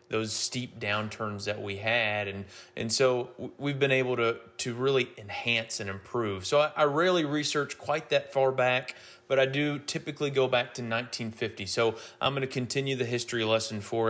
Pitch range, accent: 110-135 Hz, American